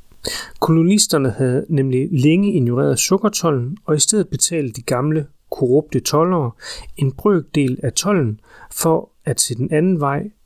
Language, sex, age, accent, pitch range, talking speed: Danish, male, 30-49, native, 120-165 Hz, 140 wpm